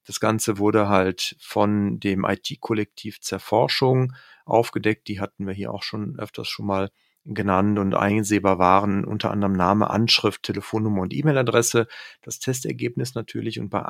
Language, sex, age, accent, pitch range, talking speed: German, male, 40-59, German, 100-125 Hz, 145 wpm